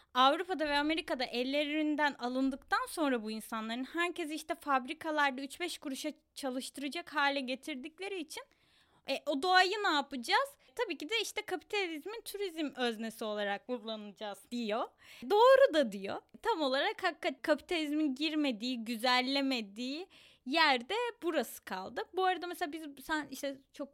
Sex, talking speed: female, 130 wpm